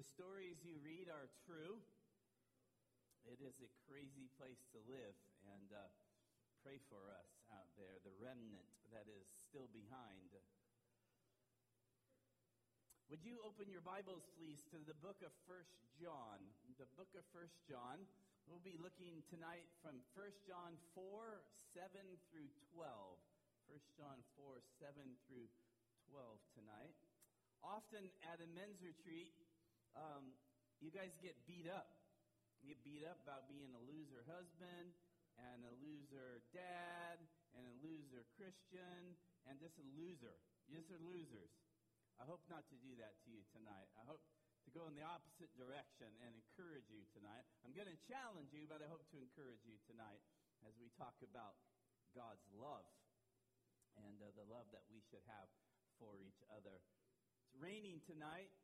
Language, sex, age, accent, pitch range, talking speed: English, male, 40-59, American, 120-170 Hz, 155 wpm